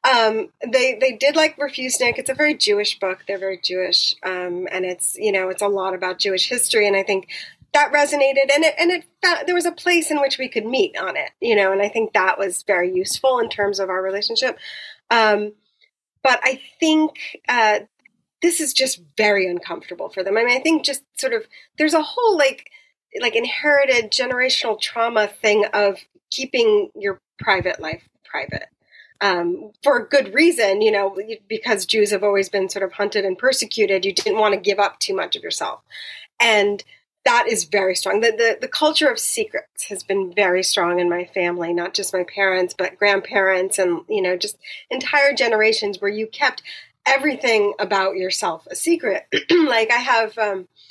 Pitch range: 195-290 Hz